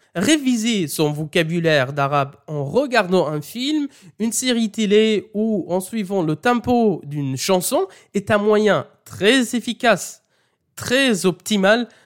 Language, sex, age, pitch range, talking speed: French, male, 20-39, 165-235 Hz, 125 wpm